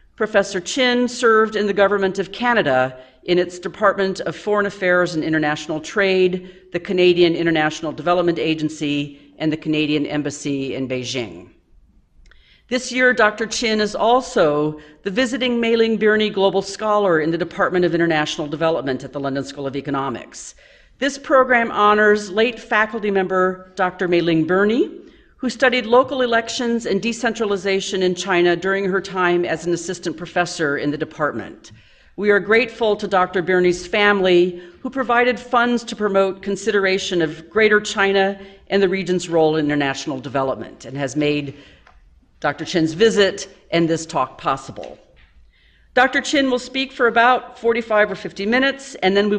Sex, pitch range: female, 160-225 Hz